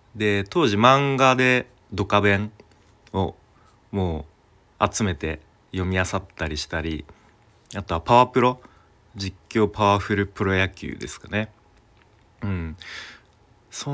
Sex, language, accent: male, Japanese, native